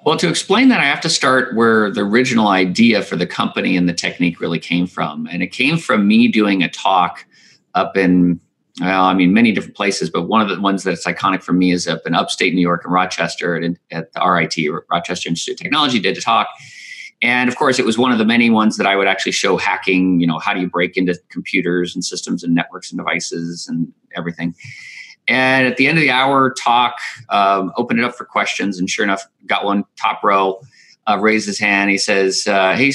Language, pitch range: English, 90-125 Hz